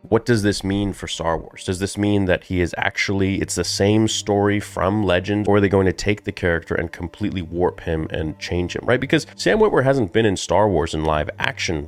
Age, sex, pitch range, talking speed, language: 30-49, male, 80-100 Hz, 240 wpm, English